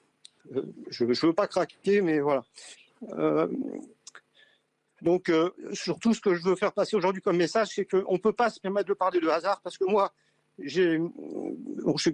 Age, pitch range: 50-69, 135-175 Hz